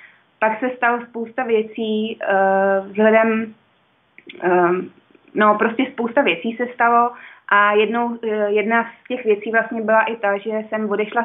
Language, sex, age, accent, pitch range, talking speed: Czech, female, 20-39, native, 205-230 Hz, 135 wpm